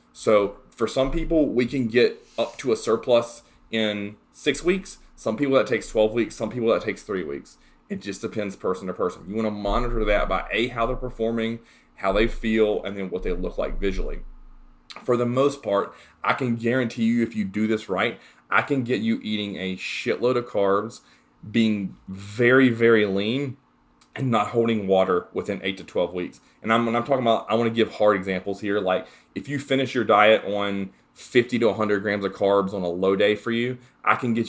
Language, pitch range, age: English, 95-115 Hz, 30-49